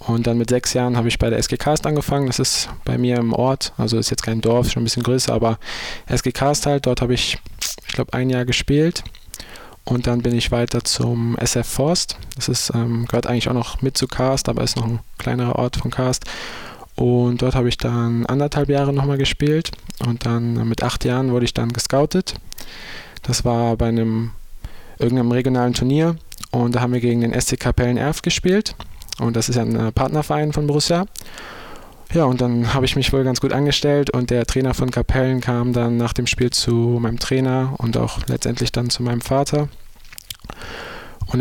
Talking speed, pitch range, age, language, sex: 200 wpm, 120-135 Hz, 20-39, German, male